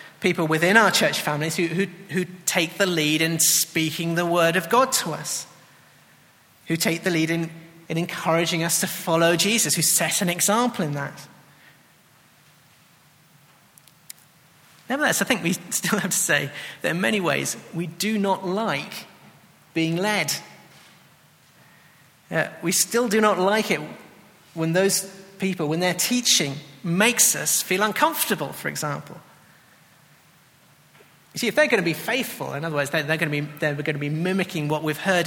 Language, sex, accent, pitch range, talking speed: English, male, British, 160-195 Hz, 155 wpm